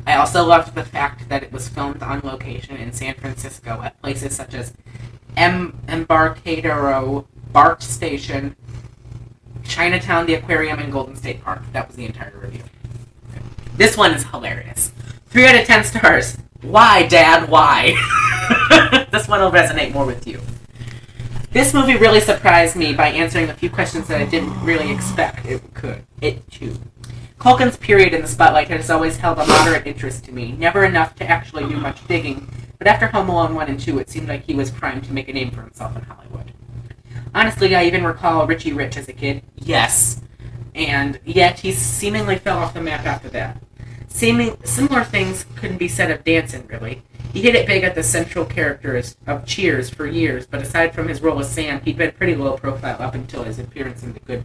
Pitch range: 120-155 Hz